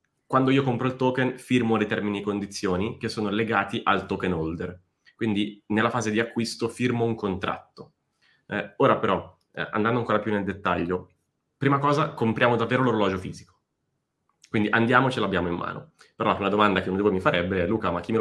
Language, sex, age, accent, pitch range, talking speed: Italian, male, 20-39, native, 90-115 Hz, 190 wpm